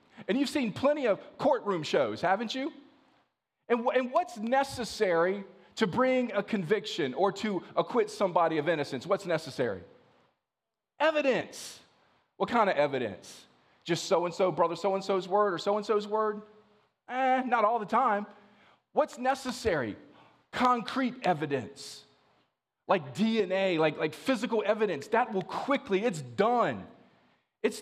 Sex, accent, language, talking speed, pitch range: male, American, English, 130 wpm, 190-255 Hz